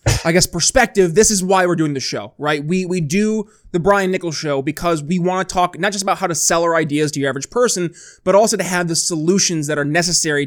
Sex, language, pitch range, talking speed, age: male, English, 165-205 Hz, 250 wpm, 20-39